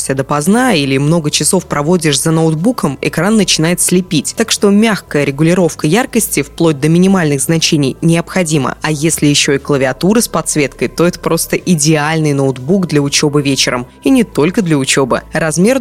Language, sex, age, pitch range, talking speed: Russian, female, 20-39, 150-205 Hz, 155 wpm